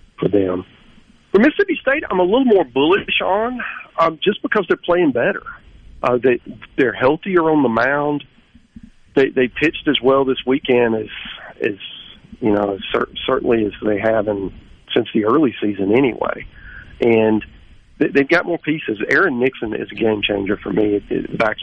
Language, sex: English, male